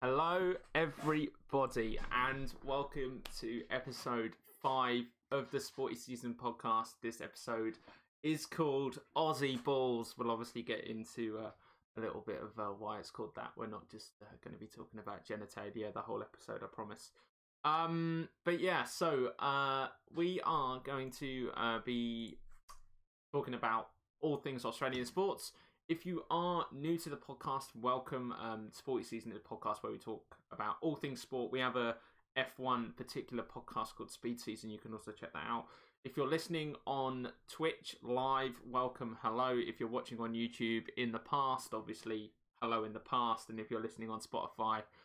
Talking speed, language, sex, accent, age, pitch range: 165 wpm, English, male, British, 20-39, 115-140 Hz